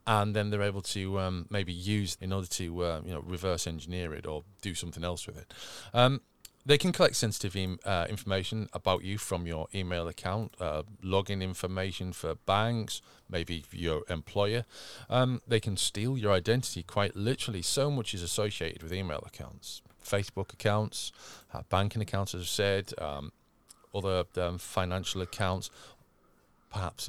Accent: British